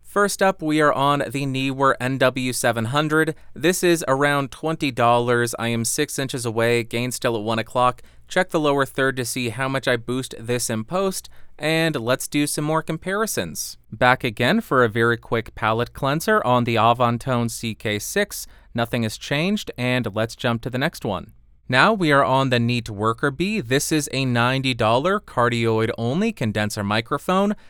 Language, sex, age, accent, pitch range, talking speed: English, male, 30-49, American, 115-145 Hz, 175 wpm